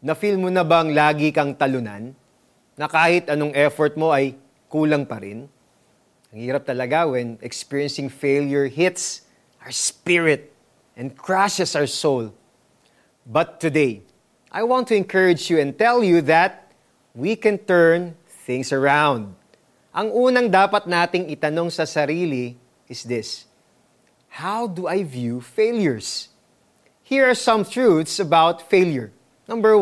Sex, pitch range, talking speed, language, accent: male, 135-180 Hz, 135 wpm, Filipino, native